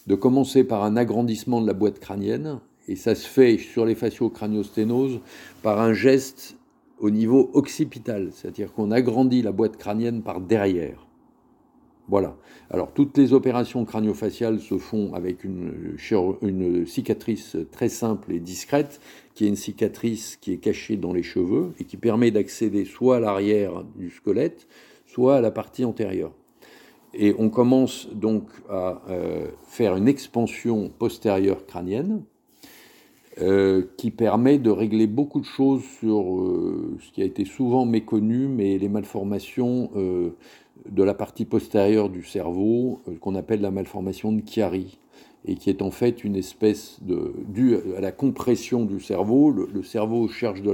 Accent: French